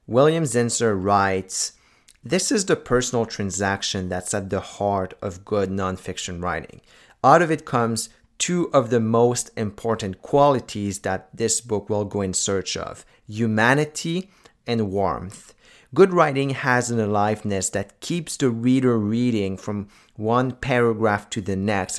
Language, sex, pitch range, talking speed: English, male, 105-135 Hz, 145 wpm